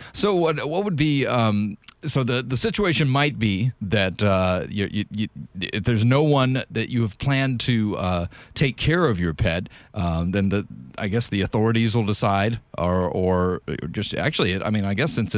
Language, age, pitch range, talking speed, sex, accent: English, 40-59, 95-130 Hz, 195 wpm, male, American